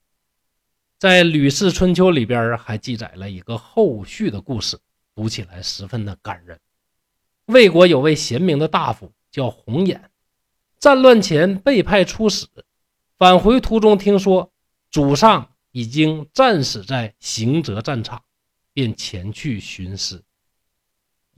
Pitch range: 105-175 Hz